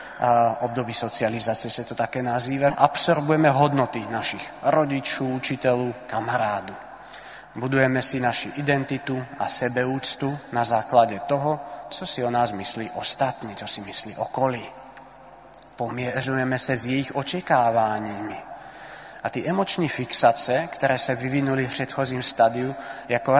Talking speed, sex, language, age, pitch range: 125 wpm, male, Czech, 30-49, 120-135 Hz